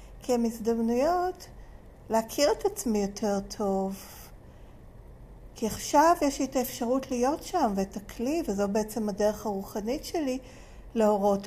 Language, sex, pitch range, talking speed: Hebrew, female, 190-225 Hz, 110 wpm